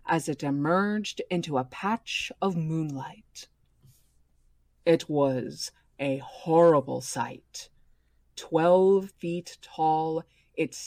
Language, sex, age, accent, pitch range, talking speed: English, female, 20-39, American, 140-195 Hz, 95 wpm